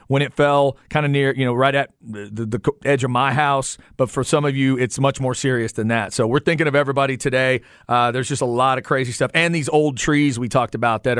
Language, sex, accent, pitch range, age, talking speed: English, male, American, 125-155 Hz, 40-59, 265 wpm